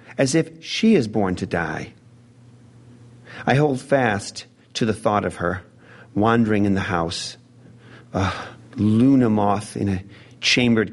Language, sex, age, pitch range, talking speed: English, male, 40-59, 105-125 Hz, 135 wpm